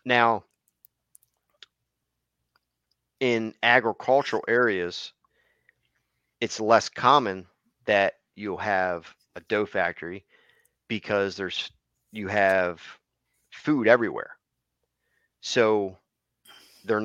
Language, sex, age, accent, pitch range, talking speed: English, male, 30-49, American, 95-115 Hz, 75 wpm